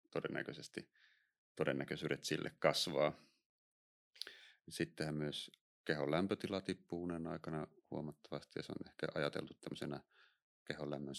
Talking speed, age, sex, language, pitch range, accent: 105 wpm, 30-49, male, Finnish, 70-80 Hz, native